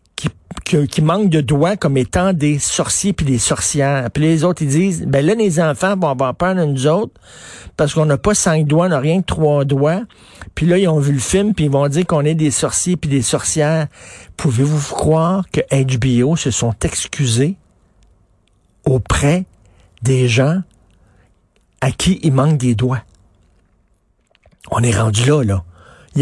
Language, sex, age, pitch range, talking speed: French, male, 50-69, 130-185 Hz, 185 wpm